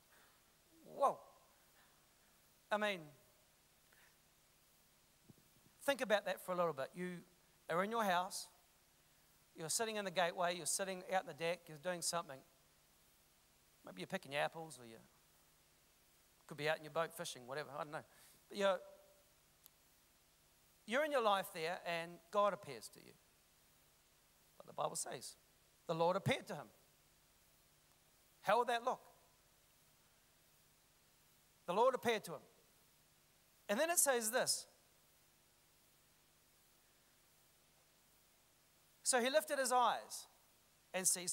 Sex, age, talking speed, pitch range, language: male, 40-59, 130 wpm, 170-215 Hz, English